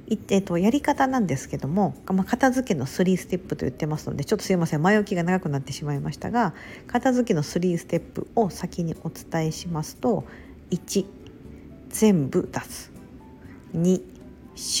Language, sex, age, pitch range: Japanese, female, 50-69, 165-240 Hz